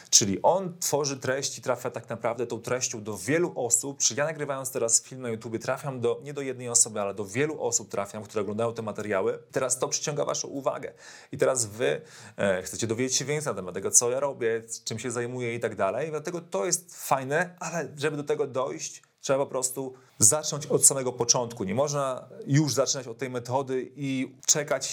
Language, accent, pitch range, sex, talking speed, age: Polish, native, 115-140 Hz, male, 205 wpm, 30-49